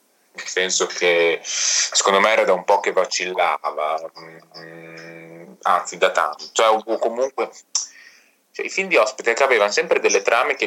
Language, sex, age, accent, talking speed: Italian, male, 30-49, native, 150 wpm